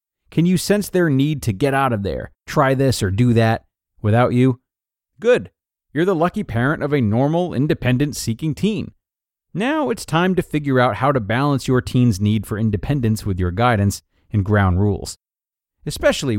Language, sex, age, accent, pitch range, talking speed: English, male, 30-49, American, 105-150 Hz, 180 wpm